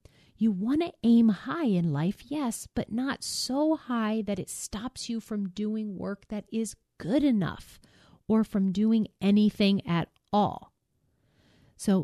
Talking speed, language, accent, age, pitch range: 150 wpm, English, American, 40-59, 170-220 Hz